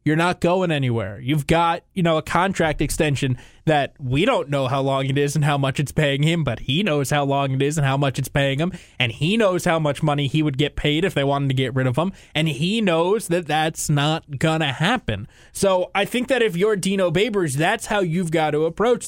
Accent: American